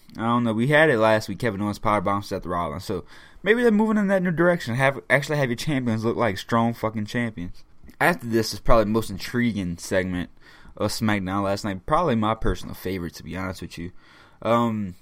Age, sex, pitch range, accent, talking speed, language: 10-29, male, 100-130 Hz, American, 215 wpm, English